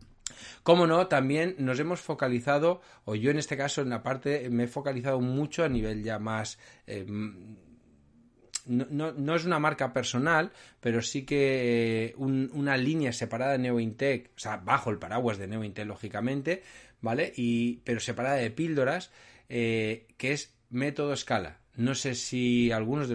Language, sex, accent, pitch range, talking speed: Spanish, male, Spanish, 115-140 Hz, 165 wpm